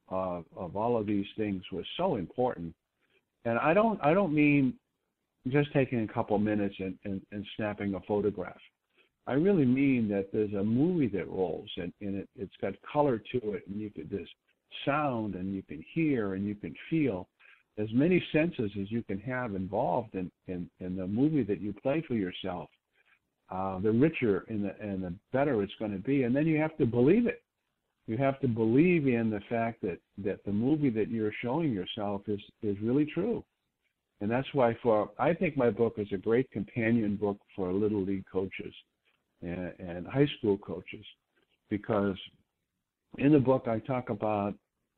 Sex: male